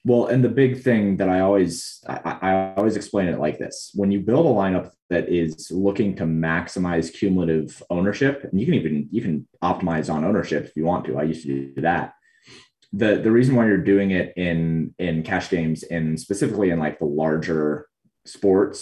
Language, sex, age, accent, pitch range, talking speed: English, male, 30-49, American, 85-115 Hz, 200 wpm